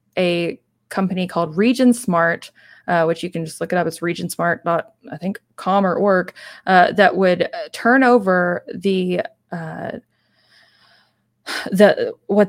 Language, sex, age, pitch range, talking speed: English, female, 20-39, 170-200 Hz, 145 wpm